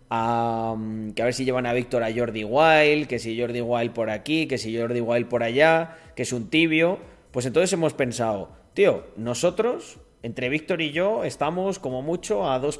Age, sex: 30-49, male